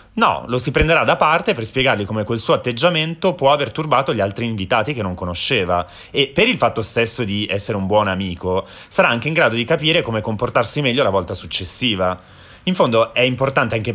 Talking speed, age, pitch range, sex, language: 205 wpm, 30-49, 95-120 Hz, male, Italian